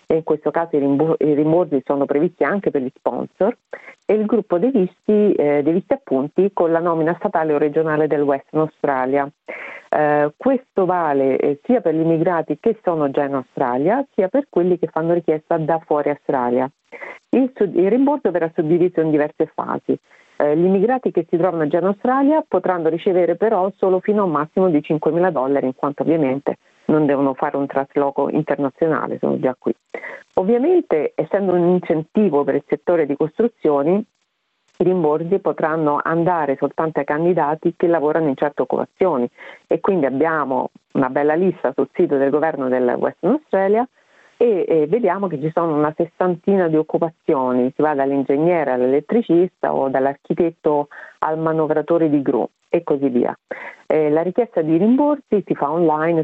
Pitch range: 145-195 Hz